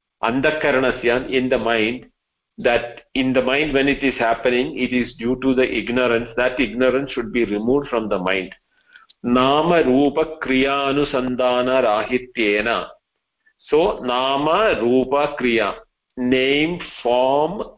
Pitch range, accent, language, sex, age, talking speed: 125-160 Hz, Indian, English, male, 50-69, 125 wpm